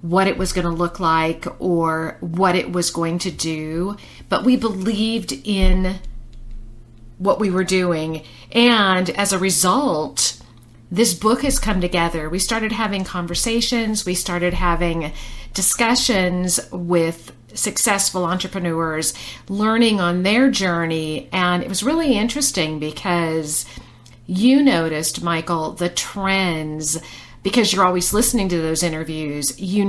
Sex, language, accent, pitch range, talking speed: female, English, American, 160-200 Hz, 130 wpm